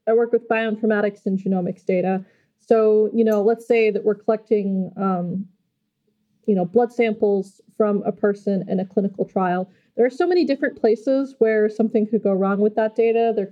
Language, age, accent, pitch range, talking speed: English, 20-39, American, 200-240 Hz, 185 wpm